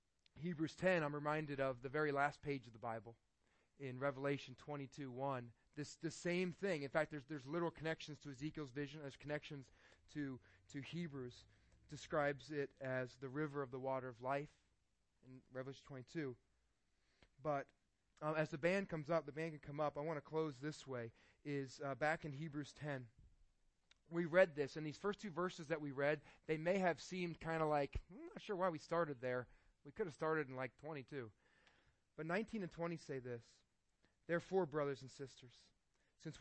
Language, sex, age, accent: English, male, 30-49, American